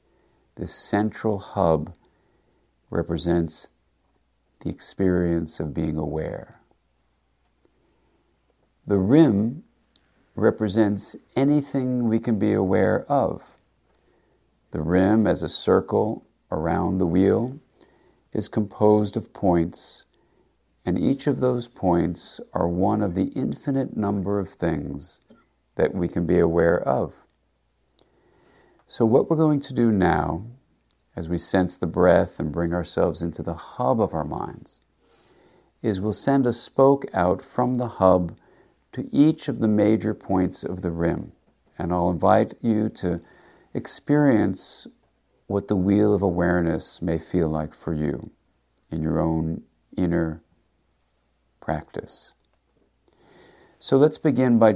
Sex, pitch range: male, 80-110 Hz